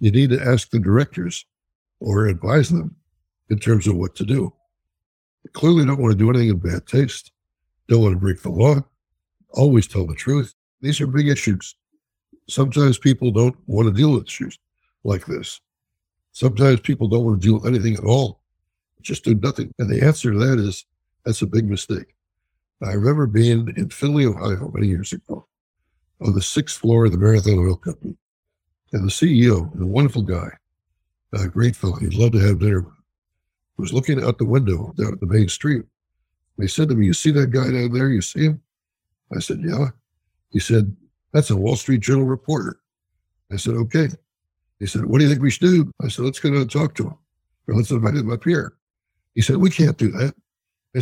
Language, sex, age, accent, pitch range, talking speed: English, male, 60-79, American, 95-135 Hz, 200 wpm